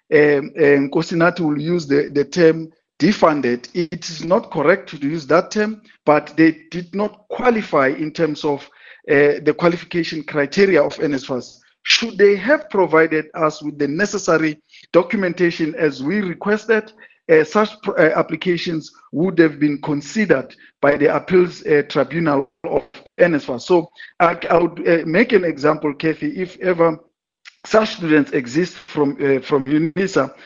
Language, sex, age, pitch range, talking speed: English, male, 50-69, 150-180 Hz, 150 wpm